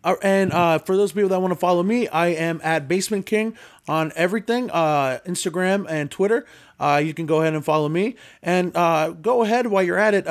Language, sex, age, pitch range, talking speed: English, male, 20-39, 155-195 Hz, 220 wpm